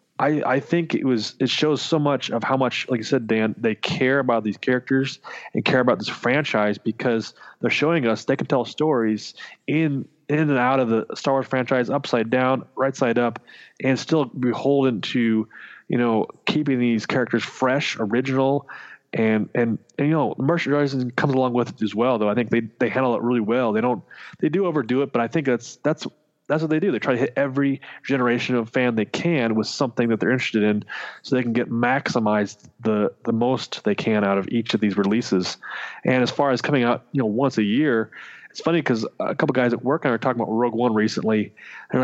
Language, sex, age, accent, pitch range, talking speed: English, male, 20-39, American, 115-145 Hz, 220 wpm